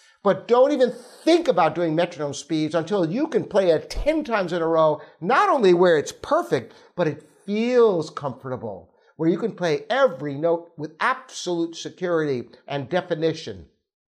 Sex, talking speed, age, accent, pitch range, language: male, 160 wpm, 60-79, American, 170-255 Hz, English